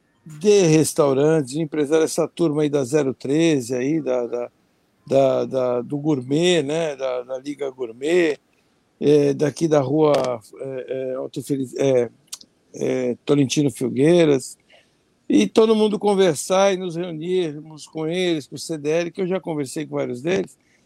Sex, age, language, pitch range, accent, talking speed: male, 60-79, Portuguese, 140-175 Hz, Brazilian, 145 wpm